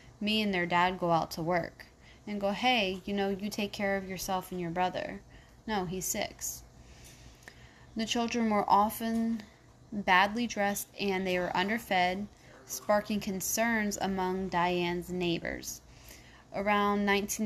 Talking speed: 140 wpm